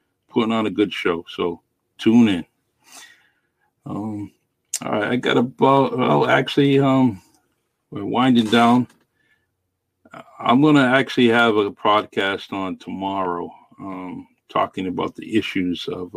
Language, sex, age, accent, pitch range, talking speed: English, male, 50-69, American, 90-105 Hz, 135 wpm